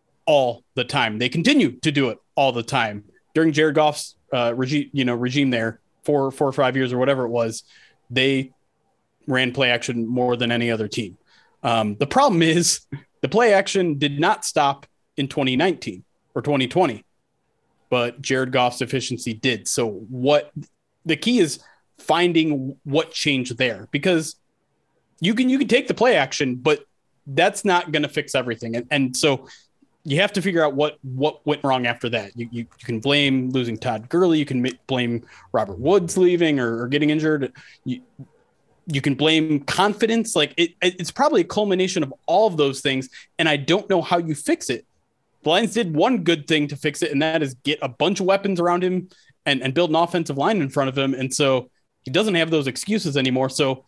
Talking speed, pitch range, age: 195 wpm, 130-165 Hz, 30-49